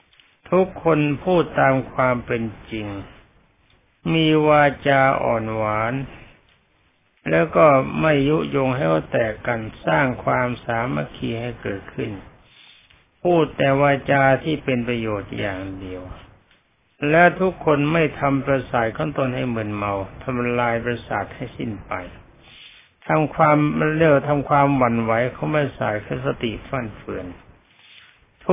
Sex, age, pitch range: male, 60-79, 110-145 Hz